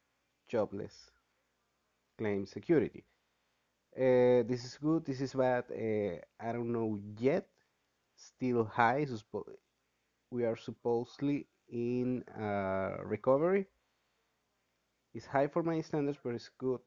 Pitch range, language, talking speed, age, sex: 110-135 Hz, English, 105 wpm, 30-49, male